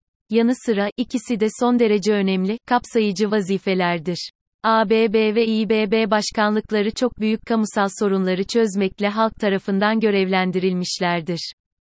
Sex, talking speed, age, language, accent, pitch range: female, 105 wpm, 30-49, Turkish, native, 190-220 Hz